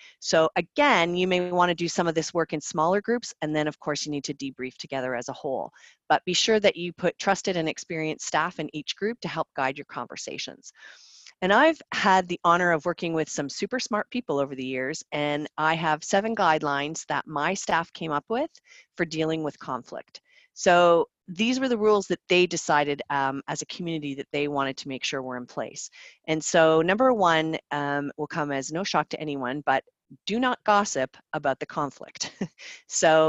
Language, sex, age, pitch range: English, female, 40-59, 150-190 Hz